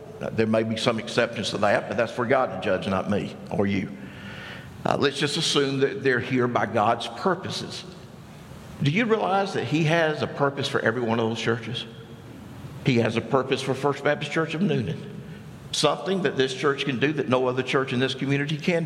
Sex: male